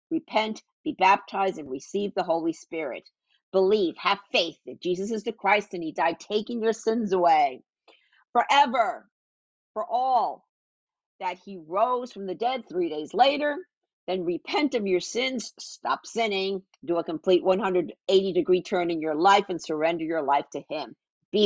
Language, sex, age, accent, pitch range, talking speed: English, female, 50-69, American, 165-240 Hz, 160 wpm